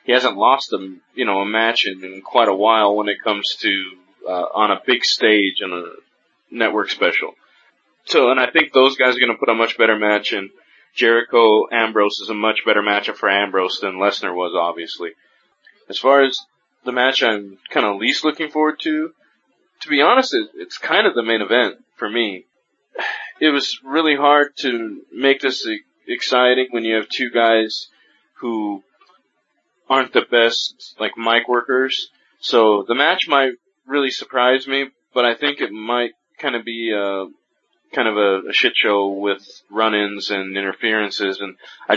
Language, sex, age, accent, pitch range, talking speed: English, male, 20-39, American, 100-130 Hz, 175 wpm